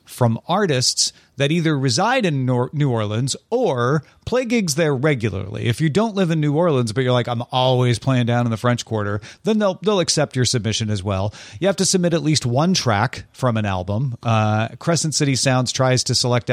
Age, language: 40-59, English